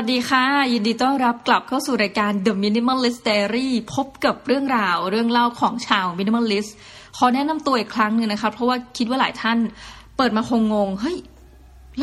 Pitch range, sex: 185-240 Hz, female